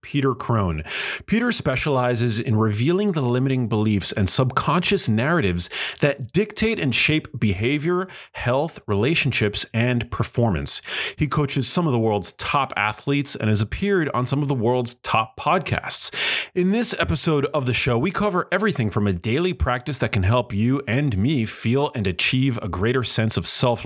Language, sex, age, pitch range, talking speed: English, male, 30-49, 105-145 Hz, 165 wpm